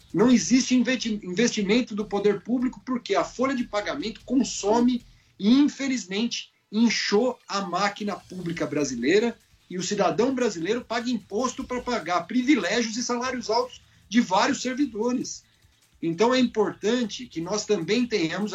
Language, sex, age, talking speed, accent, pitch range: Portuguese, male, 50-69, 135 wpm, Brazilian, 200-245 Hz